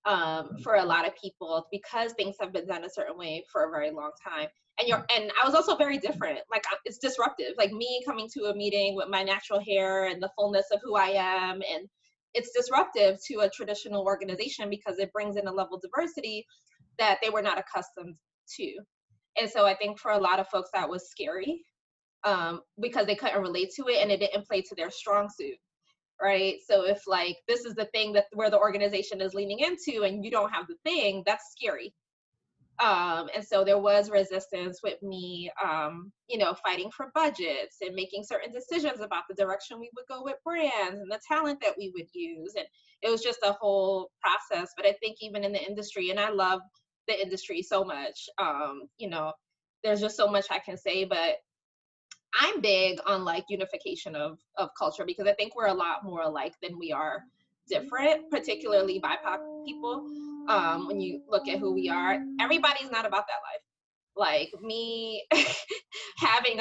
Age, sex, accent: 20-39, female, American